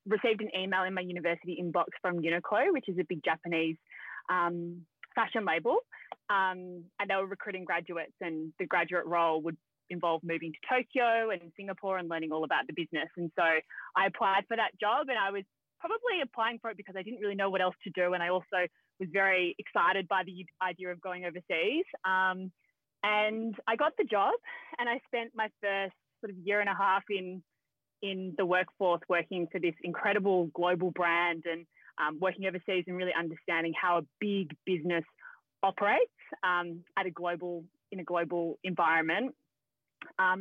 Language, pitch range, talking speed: English, 175-210 Hz, 185 wpm